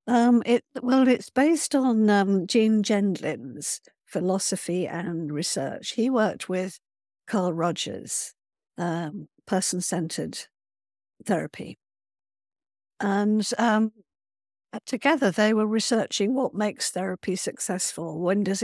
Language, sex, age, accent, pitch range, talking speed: English, female, 60-79, British, 180-220 Hz, 105 wpm